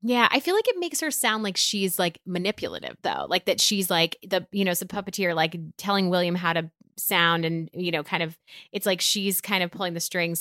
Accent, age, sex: American, 20-39, female